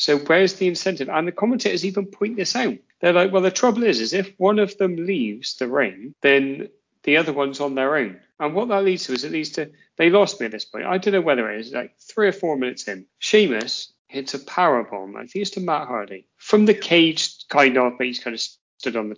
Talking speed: 255 wpm